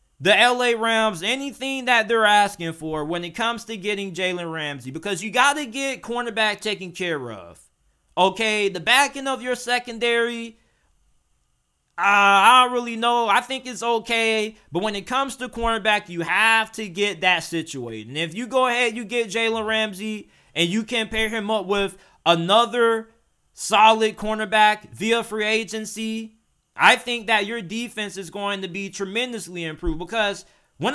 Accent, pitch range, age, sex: American, 195-240 Hz, 20-39, male